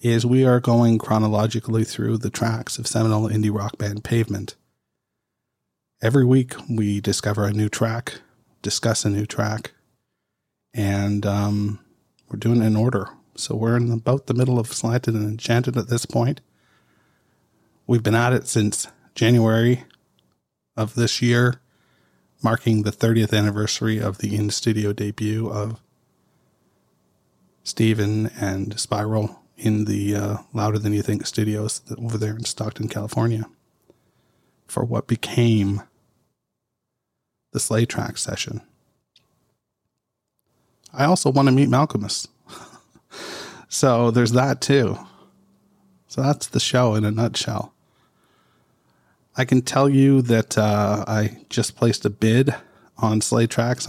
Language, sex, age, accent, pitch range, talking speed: English, male, 40-59, American, 105-120 Hz, 130 wpm